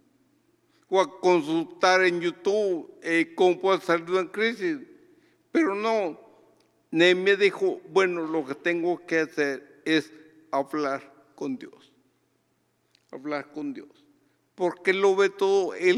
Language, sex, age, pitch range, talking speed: Spanish, male, 60-79, 180-215 Hz, 135 wpm